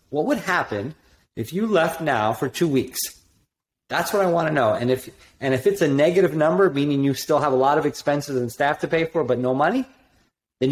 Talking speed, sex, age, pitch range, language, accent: 225 wpm, male, 40-59, 120-160 Hz, English, American